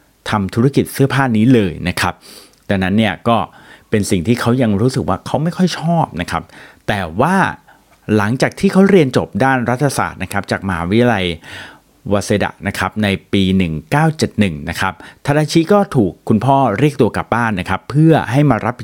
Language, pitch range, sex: Thai, 95-130 Hz, male